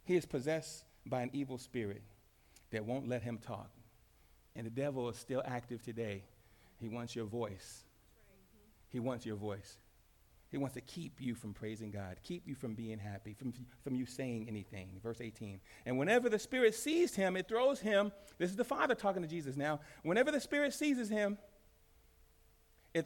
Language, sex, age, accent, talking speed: English, male, 40-59, American, 180 wpm